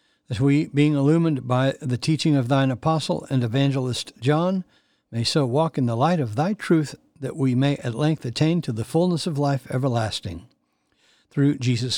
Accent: American